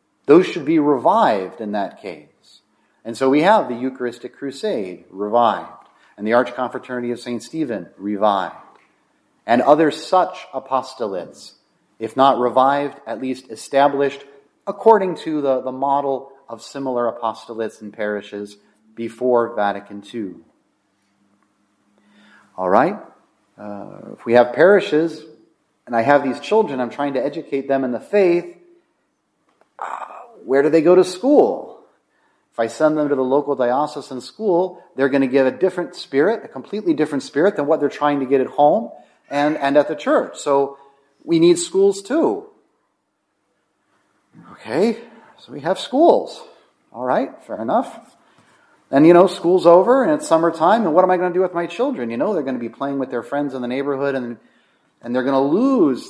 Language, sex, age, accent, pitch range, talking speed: English, male, 30-49, American, 120-175 Hz, 165 wpm